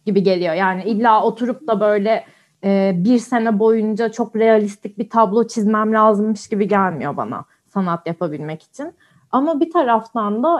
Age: 30-49